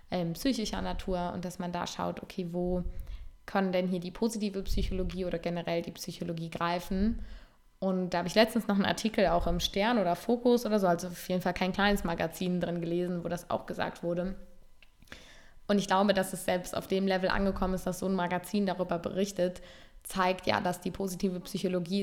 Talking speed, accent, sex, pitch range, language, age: 195 wpm, German, female, 170-190 Hz, German, 20-39